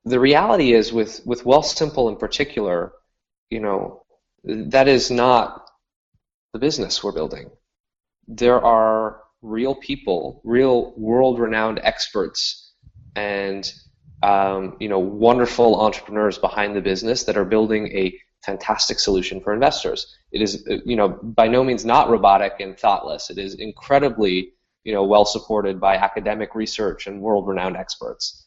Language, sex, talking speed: English, male, 135 wpm